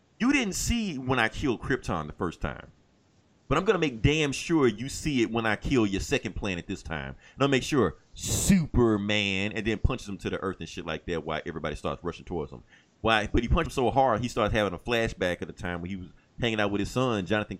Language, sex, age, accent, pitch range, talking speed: English, male, 30-49, American, 100-125 Hz, 250 wpm